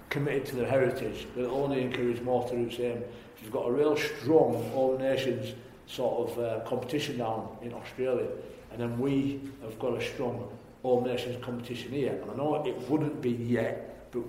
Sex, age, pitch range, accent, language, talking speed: male, 40-59, 120-140 Hz, British, English, 195 wpm